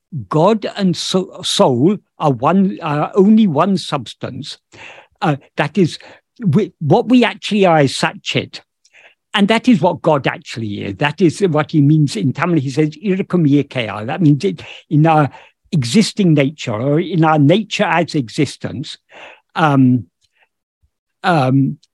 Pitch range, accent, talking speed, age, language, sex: 140-190 Hz, British, 140 wpm, 60-79, English, male